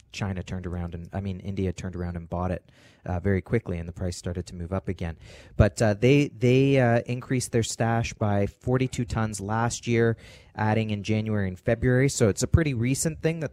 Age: 30-49